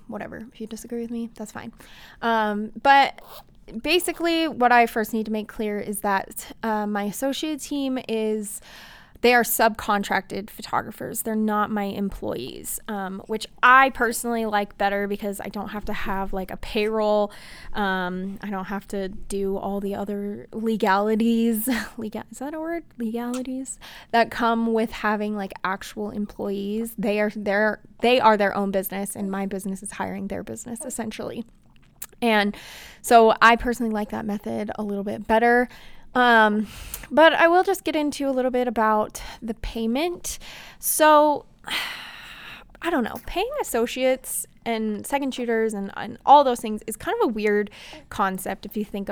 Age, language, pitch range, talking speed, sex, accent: 20-39, English, 205-250 Hz, 160 wpm, female, American